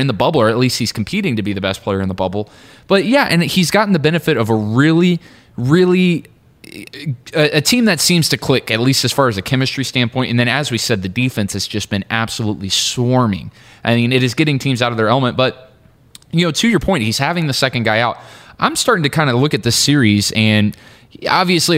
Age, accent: 20-39, American